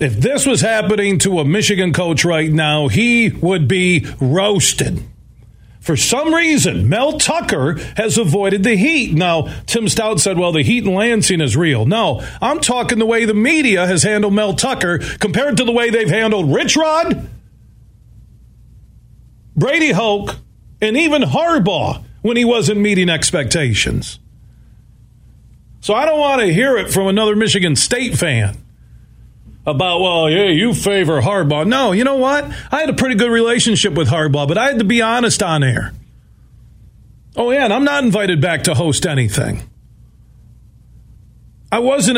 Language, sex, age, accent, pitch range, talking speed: English, male, 40-59, American, 135-220 Hz, 160 wpm